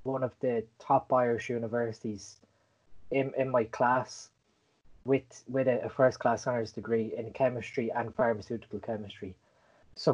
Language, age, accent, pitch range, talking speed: Italian, 20-39, Irish, 115-155 Hz, 135 wpm